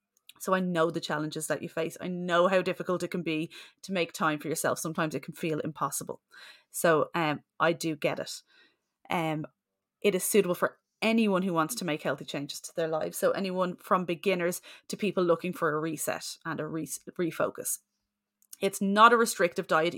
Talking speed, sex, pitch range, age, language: 190 wpm, female, 160-190 Hz, 30-49, English